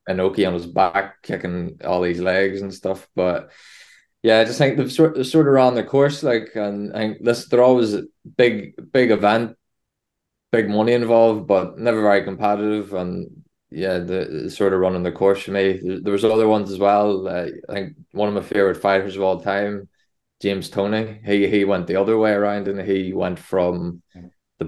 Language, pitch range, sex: English, 95-110 Hz, male